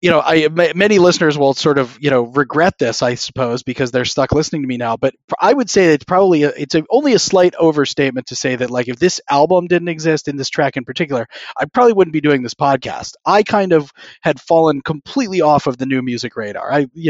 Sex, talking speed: male, 245 wpm